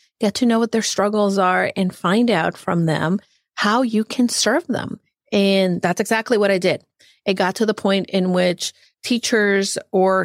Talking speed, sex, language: 185 wpm, female, English